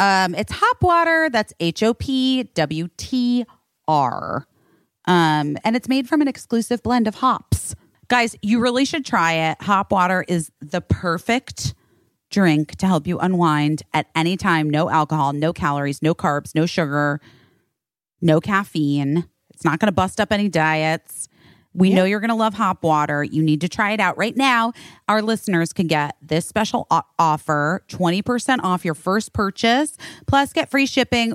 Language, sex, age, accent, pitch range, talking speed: English, female, 30-49, American, 160-230 Hz, 160 wpm